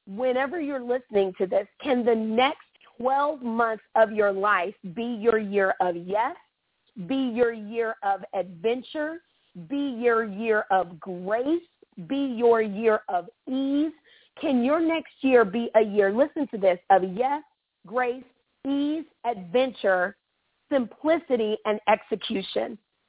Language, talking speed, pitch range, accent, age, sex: English, 135 wpm, 200-260 Hz, American, 40-59, female